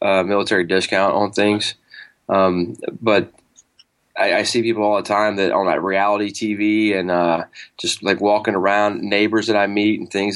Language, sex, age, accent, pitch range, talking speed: English, male, 20-39, American, 95-110 Hz, 180 wpm